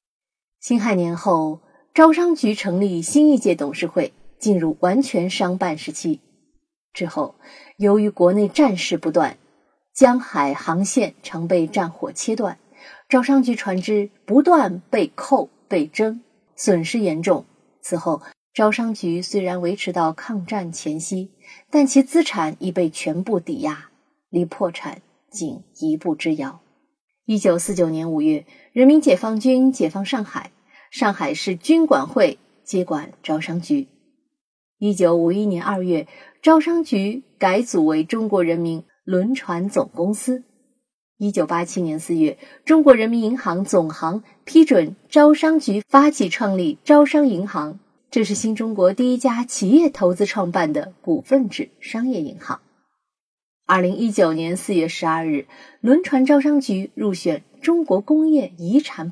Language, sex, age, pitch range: Chinese, female, 20-39, 180-275 Hz